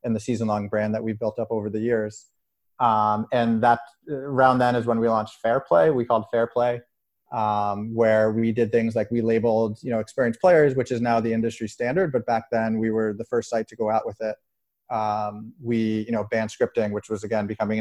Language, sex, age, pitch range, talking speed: English, male, 30-49, 110-120 Hz, 225 wpm